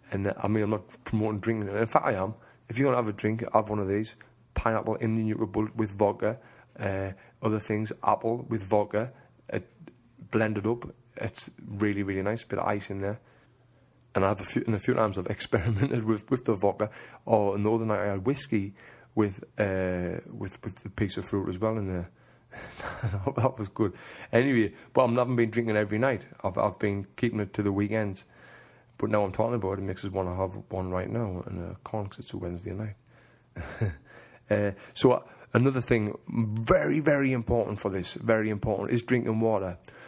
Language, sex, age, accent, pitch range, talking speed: English, male, 30-49, British, 100-115 Hz, 210 wpm